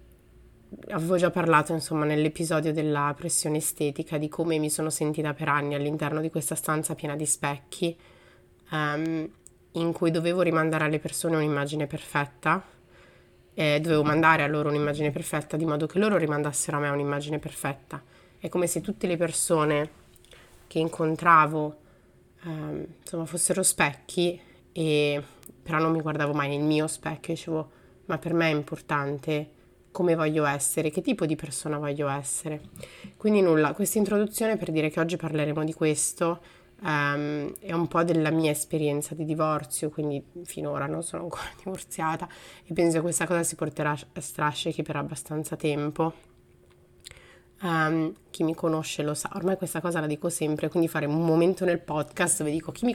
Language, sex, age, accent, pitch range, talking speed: Italian, female, 30-49, native, 150-165 Hz, 160 wpm